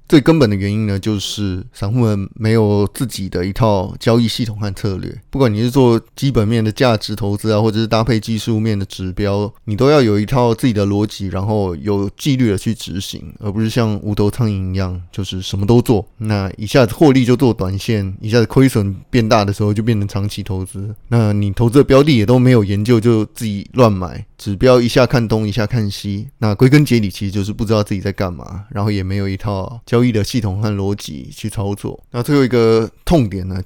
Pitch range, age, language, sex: 100-120 Hz, 20-39, Chinese, male